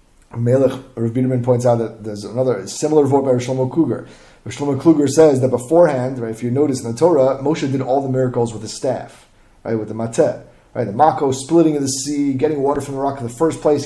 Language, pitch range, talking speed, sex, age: English, 115-145 Hz, 230 wpm, male, 30-49